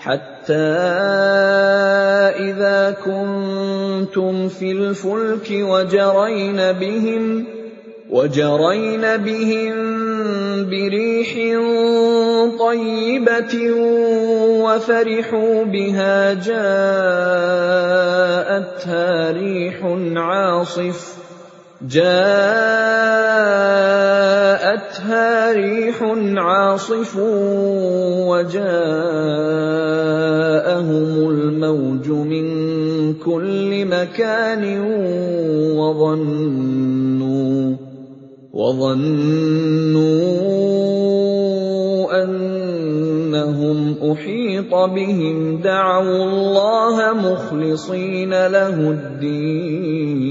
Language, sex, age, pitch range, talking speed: English, male, 30-49, 160-200 Hz, 40 wpm